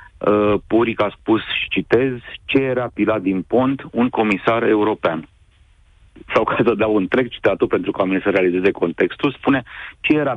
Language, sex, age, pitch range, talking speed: Romanian, male, 40-59, 100-130 Hz, 160 wpm